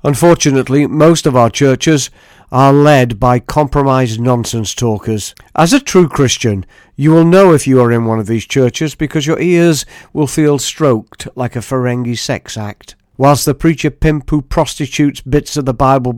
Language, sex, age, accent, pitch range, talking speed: English, male, 50-69, British, 120-150 Hz, 175 wpm